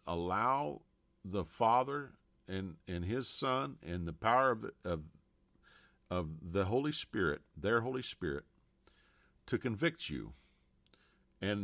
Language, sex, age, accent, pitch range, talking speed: English, male, 50-69, American, 85-125 Hz, 115 wpm